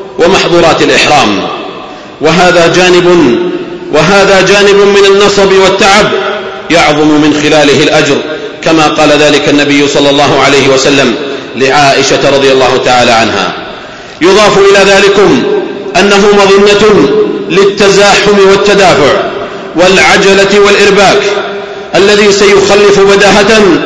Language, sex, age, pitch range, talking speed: Arabic, male, 40-59, 170-215 Hz, 95 wpm